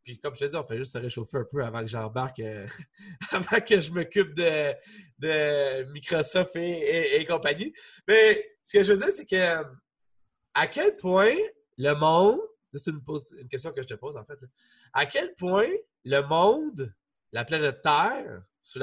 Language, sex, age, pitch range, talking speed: French, male, 30-49, 130-200 Hz, 195 wpm